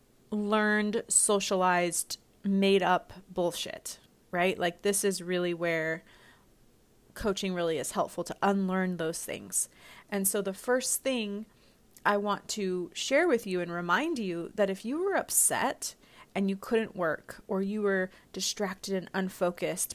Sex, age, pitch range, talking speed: female, 30-49, 185-230 Hz, 145 wpm